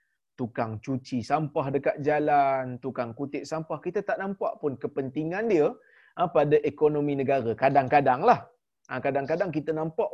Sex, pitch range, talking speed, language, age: male, 130-170 Hz, 130 wpm, Malayalam, 20-39